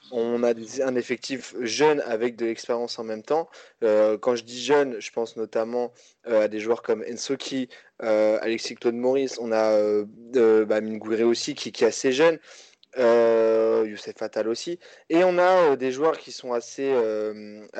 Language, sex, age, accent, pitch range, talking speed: French, male, 20-39, French, 110-145 Hz, 180 wpm